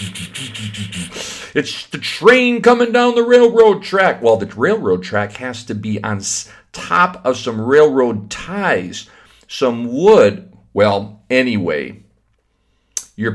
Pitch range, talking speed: 100-125 Hz, 115 wpm